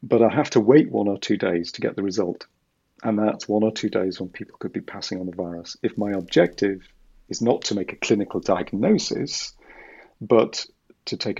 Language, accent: English, British